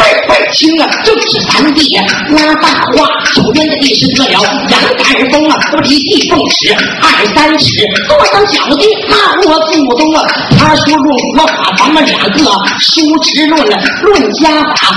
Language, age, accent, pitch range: Chinese, 40-59, native, 285-360 Hz